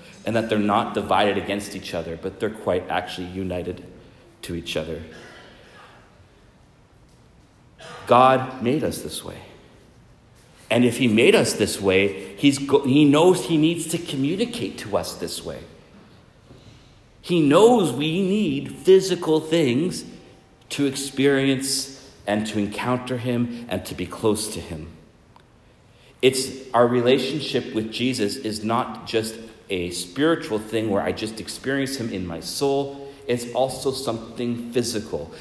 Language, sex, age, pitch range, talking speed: English, male, 40-59, 105-135 Hz, 135 wpm